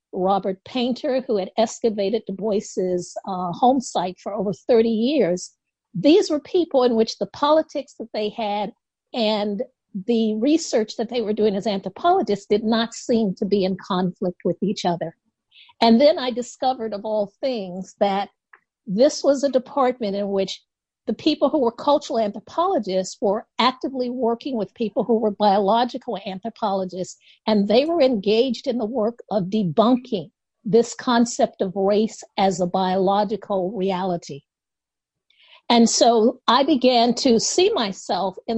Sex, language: female, English